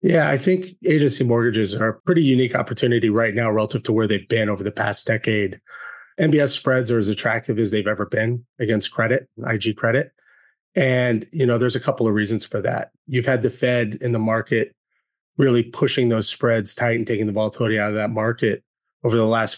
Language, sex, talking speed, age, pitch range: English, male, 205 wpm, 30-49, 110-130 Hz